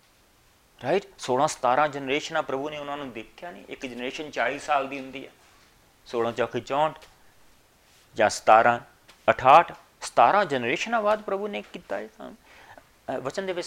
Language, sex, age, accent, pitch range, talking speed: English, male, 50-69, Indian, 120-175 Hz, 145 wpm